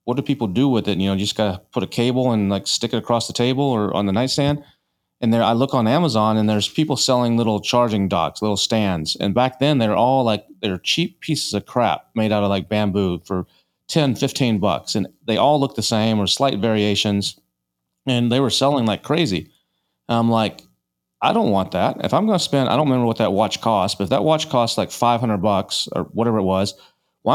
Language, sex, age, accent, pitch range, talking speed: English, male, 30-49, American, 105-125 Hz, 240 wpm